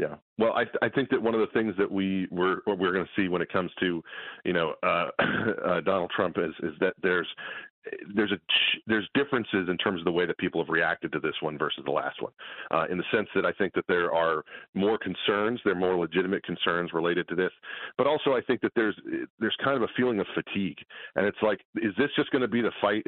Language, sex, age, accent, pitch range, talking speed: English, male, 40-59, American, 90-115 Hz, 250 wpm